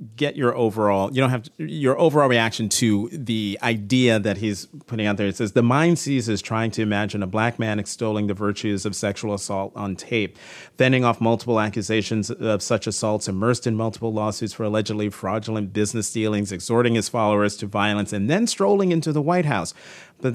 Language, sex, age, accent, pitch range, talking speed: English, male, 40-59, American, 105-125 Hz, 195 wpm